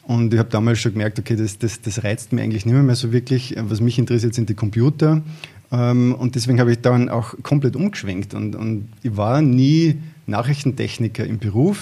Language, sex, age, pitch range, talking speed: German, male, 20-39, 115-130 Hz, 205 wpm